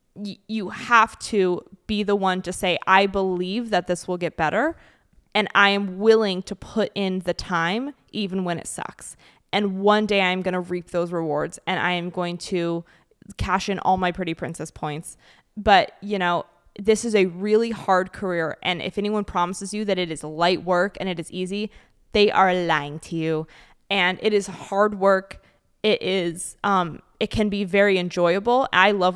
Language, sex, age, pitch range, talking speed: English, female, 20-39, 175-210 Hz, 190 wpm